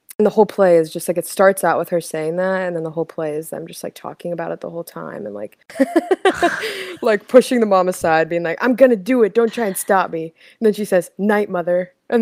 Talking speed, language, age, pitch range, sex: 270 wpm, English, 20-39, 175-235 Hz, female